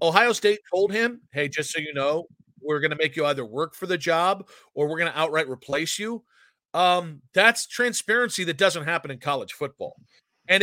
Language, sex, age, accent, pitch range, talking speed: English, male, 40-59, American, 160-225 Hz, 205 wpm